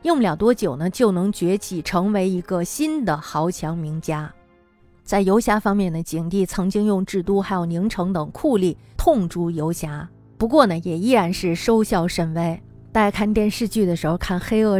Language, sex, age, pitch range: Chinese, female, 20-39, 170-215 Hz